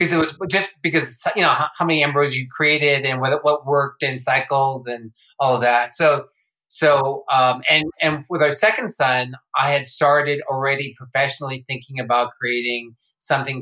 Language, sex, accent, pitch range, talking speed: English, male, American, 120-150 Hz, 180 wpm